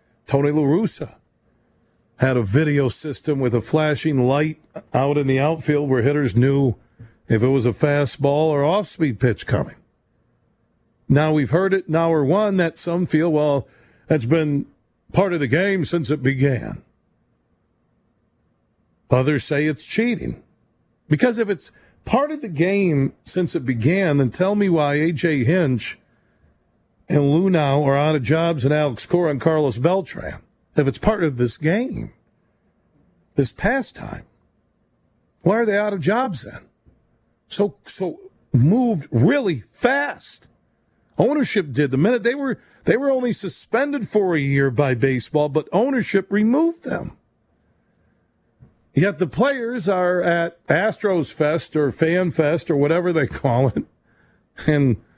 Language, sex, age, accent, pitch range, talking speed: English, male, 50-69, American, 140-185 Hz, 145 wpm